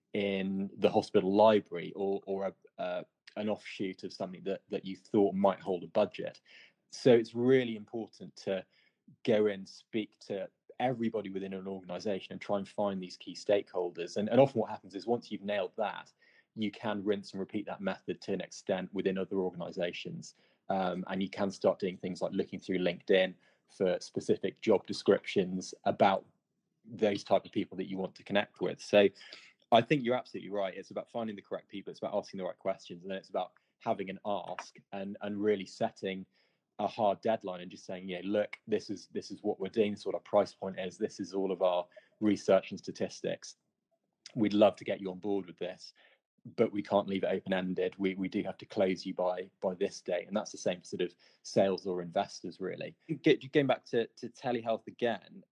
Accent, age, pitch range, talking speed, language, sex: British, 20-39, 95-110 Hz, 205 wpm, English, male